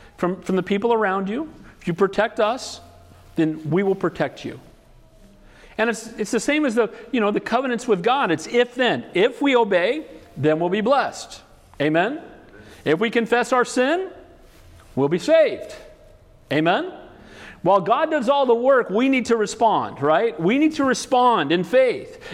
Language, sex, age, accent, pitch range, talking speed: English, male, 50-69, American, 165-260 Hz, 175 wpm